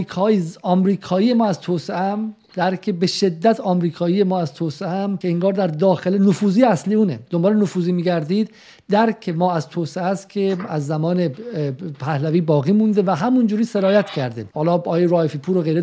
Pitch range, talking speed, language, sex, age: 175-220 Hz, 165 wpm, Persian, male, 50-69